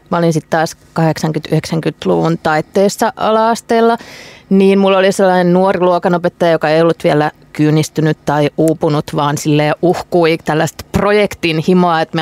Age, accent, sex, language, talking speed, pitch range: 30-49, native, female, Finnish, 135 wpm, 165-210 Hz